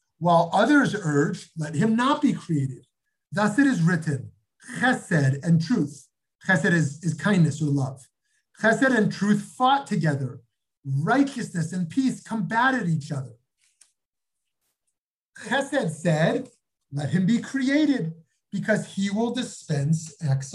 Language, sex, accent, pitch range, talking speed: English, male, American, 160-250 Hz, 125 wpm